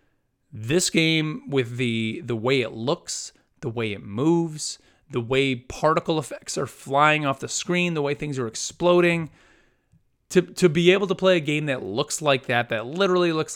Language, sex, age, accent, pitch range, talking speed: English, male, 30-49, American, 120-165 Hz, 180 wpm